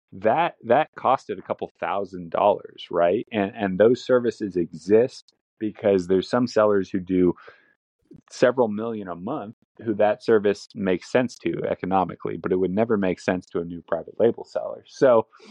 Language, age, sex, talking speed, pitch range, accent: English, 30-49, male, 165 wpm, 95-120 Hz, American